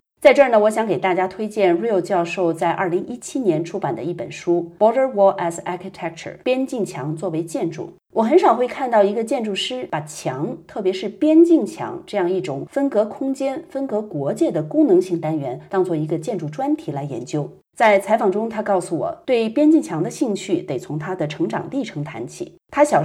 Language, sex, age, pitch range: Chinese, female, 30-49, 165-270 Hz